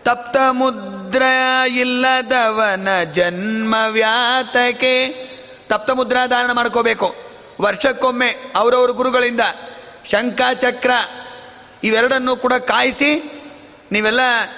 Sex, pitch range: male, 225-255 Hz